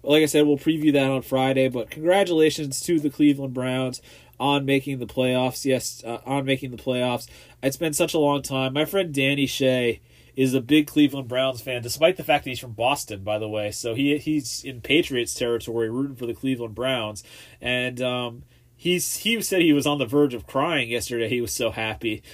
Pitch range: 125-155 Hz